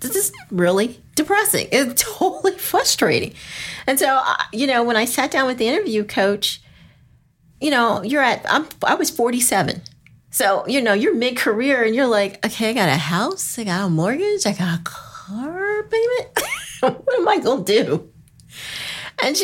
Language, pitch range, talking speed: English, 200-265 Hz, 175 wpm